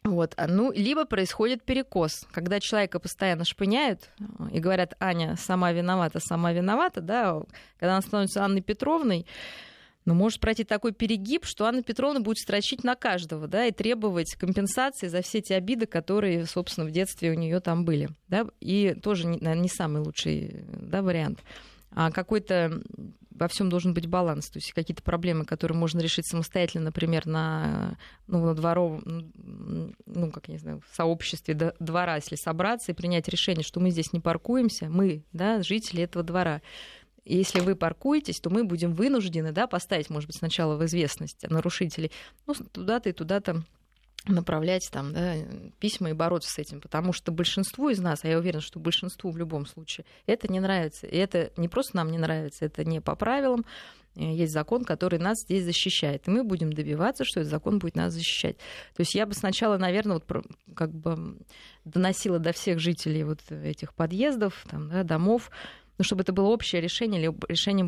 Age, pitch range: 20-39, 165-205 Hz